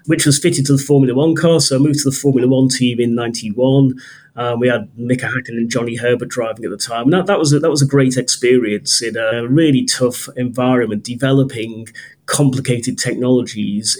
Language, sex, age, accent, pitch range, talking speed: English, male, 30-49, British, 120-140 Hz, 205 wpm